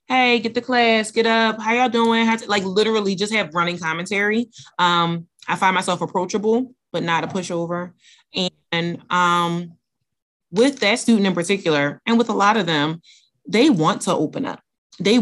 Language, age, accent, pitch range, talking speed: English, 30-49, American, 160-205 Hz, 170 wpm